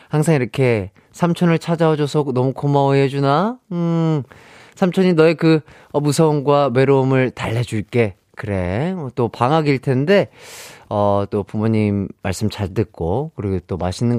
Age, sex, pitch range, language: 30-49, male, 110-160 Hz, Korean